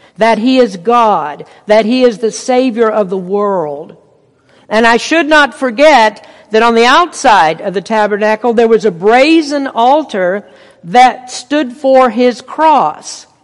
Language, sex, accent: English, female, American